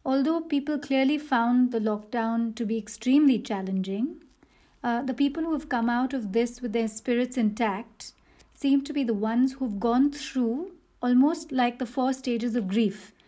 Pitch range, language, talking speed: 225-265 Hz, English, 170 wpm